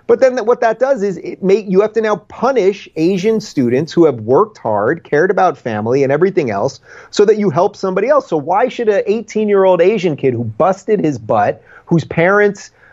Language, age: English, 30-49